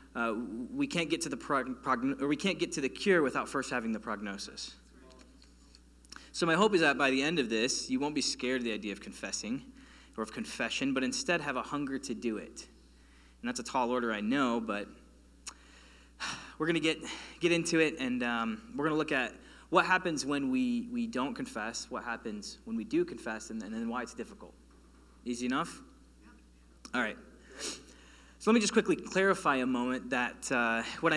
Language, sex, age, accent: English, male, 20-39, American